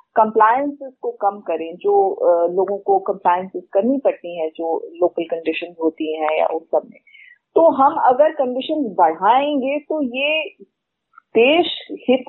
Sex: female